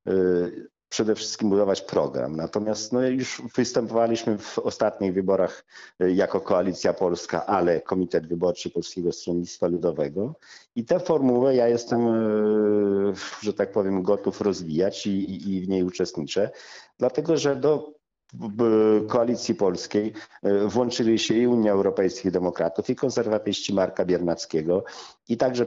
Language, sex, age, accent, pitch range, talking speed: Polish, male, 50-69, native, 95-115 Hz, 125 wpm